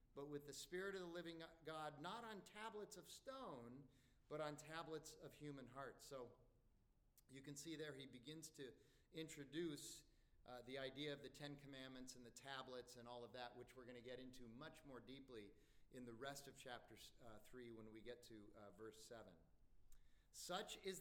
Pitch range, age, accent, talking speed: 125-160 Hz, 40-59, American, 190 wpm